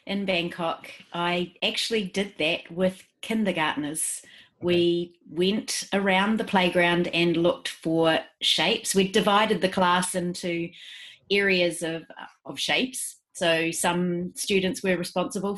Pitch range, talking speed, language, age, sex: 170-205 Hz, 120 wpm, English, 30-49, female